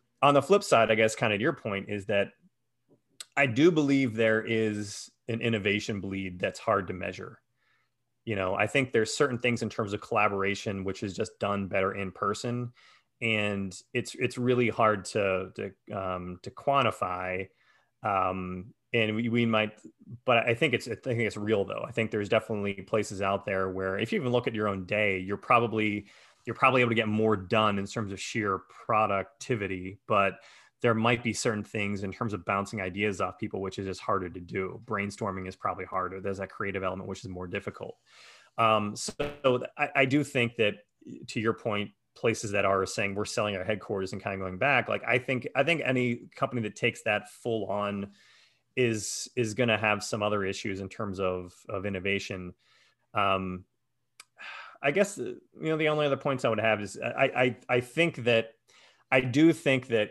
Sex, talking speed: male, 195 wpm